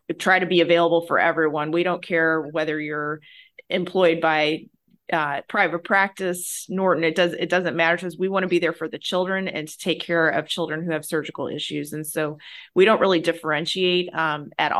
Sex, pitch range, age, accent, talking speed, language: female, 160-185 Hz, 30-49, American, 205 wpm, English